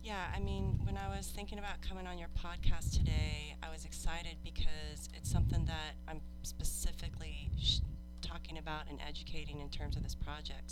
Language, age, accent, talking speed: English, 30-49, American, 175 wpm